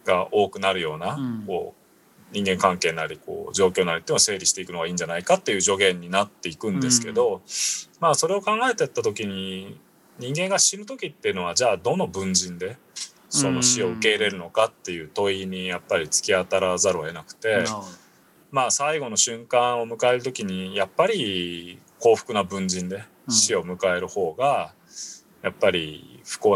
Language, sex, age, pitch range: Japanese, male, 20-39, 95-150 Hz